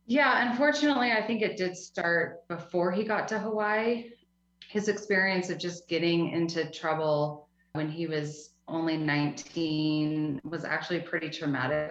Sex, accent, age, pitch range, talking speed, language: female, American, 30-49, 155-195 Hz, 140 wpm, English